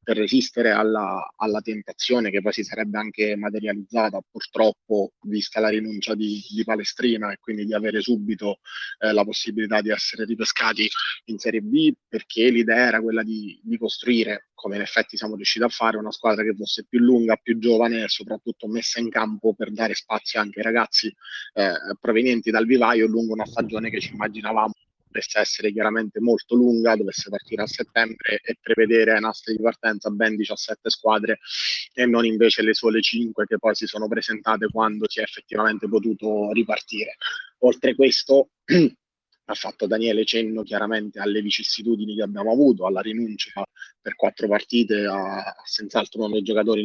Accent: native